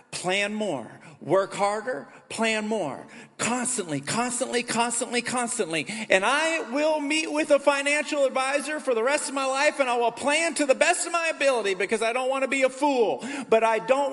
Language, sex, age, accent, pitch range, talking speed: English, male, 40-59, American, 190-280 Hz, 190 wpm